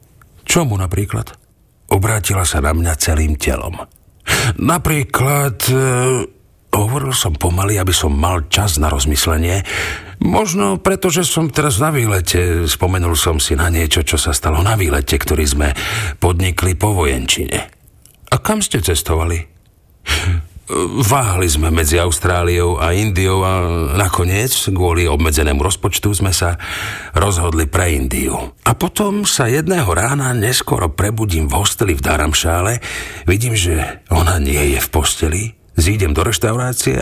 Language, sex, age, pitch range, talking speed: Slovak, male, 50-69, 85-105 Hz, 130 wpm